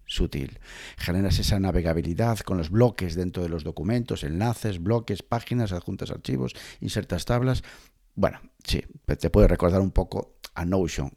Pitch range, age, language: 85-115 Hz, 50-69, Spanish